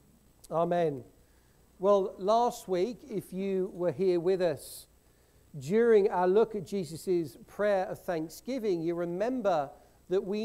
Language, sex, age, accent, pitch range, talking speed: English, male, 50-69, British, 150-205 Hz, 125 wpm